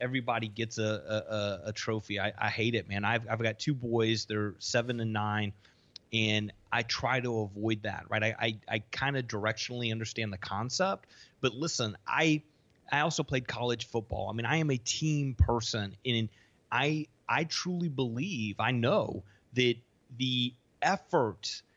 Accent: American